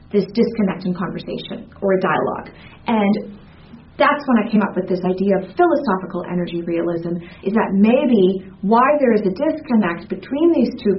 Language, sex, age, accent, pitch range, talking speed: English, female, 30-49, American, 185-235 Hz, 170 wpm